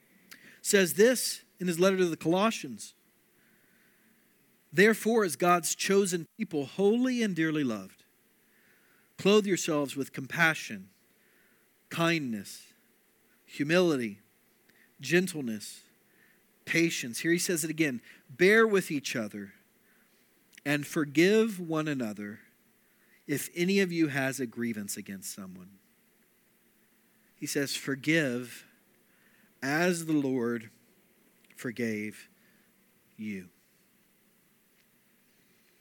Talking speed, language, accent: 90 wpm, English, American